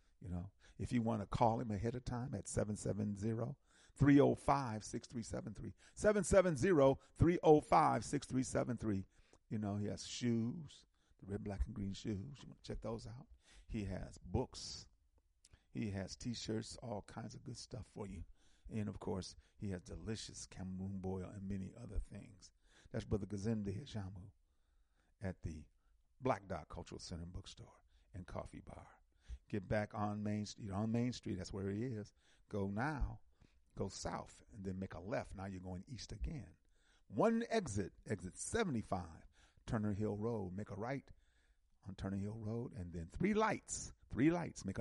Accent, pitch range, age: American, 90-115 Hz, 40-59